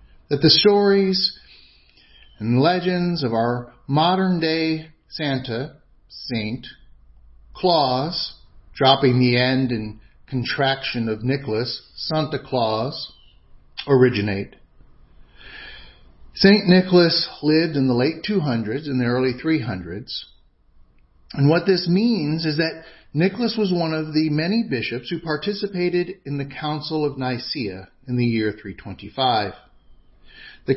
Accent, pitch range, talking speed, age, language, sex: American, 120-165 Hz, 110 wpm, 50-69, English, male